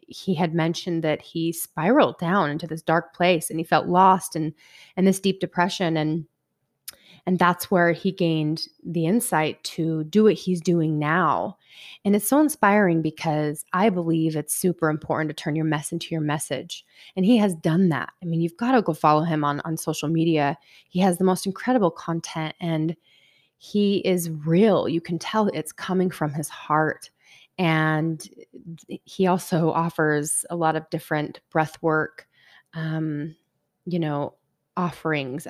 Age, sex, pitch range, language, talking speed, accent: 30-49, female, 155-185 Hz, English, 165 wpm, American